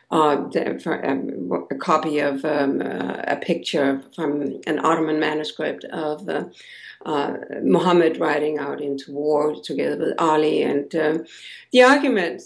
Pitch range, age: 150-175 Hz, 60-79